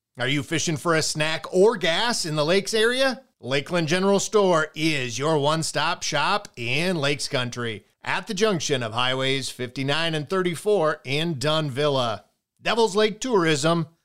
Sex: male